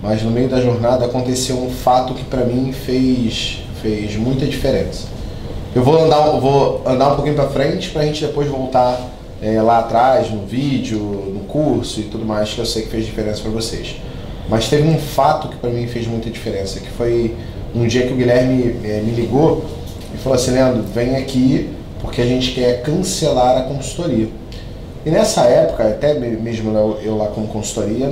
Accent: Brazilian